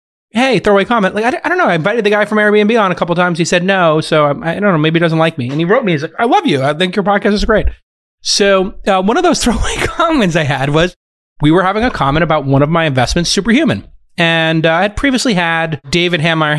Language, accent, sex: English, American, male